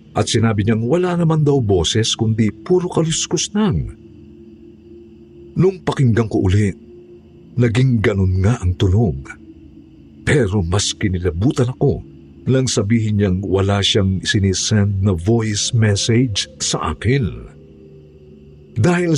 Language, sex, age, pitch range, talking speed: Filipino, male, 50-69, 90-125 Hz, 115 wpm